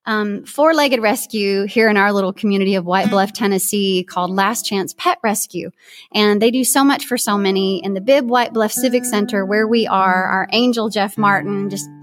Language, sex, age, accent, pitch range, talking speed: English, female, 30-49, American, 195-265 Hz, 200 wpm